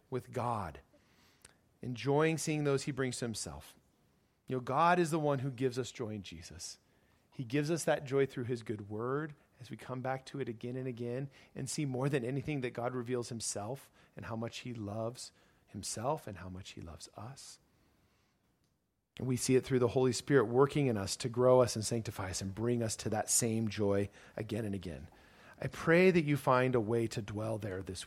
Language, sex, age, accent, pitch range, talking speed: English, male, 40-59, American, 105-130 Hz, 210 wpm